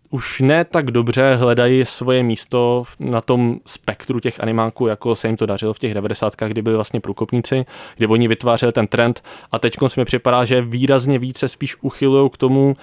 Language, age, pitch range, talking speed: Czech, 20-39, 115-130 Hz, 190 wpm